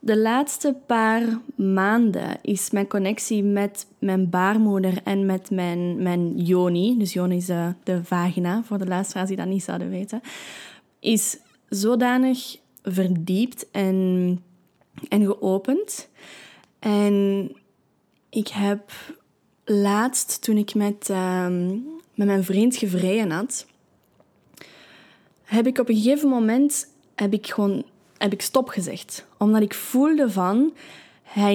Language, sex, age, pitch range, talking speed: Dutch, female, 10-29, 195-235 Hz, 125 wpm